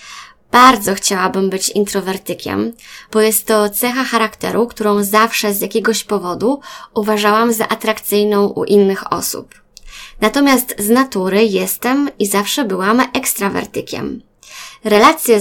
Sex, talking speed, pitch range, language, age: female, 115 wpm, 200-235 Hz, Polish, 20-39